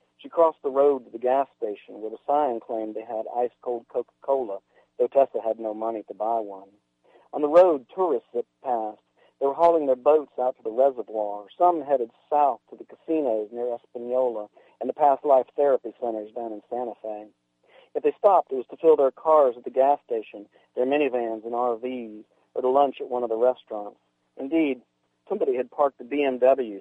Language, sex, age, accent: English, male, 50-69, American